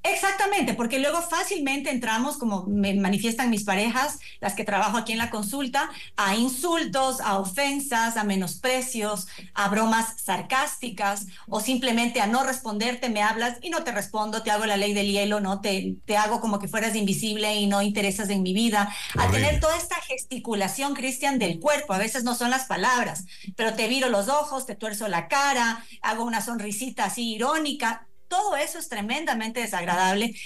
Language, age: Spanish, 40-59